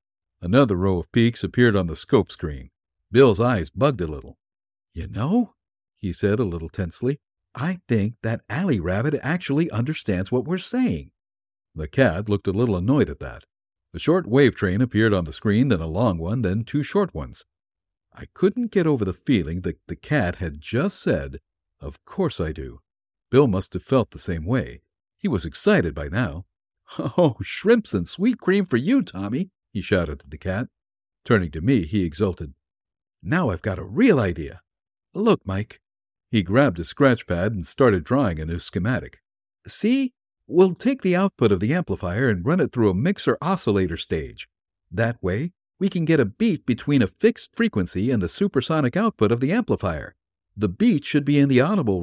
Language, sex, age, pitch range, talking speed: English, male, 60-79, 90-145 Hz, 185 wpm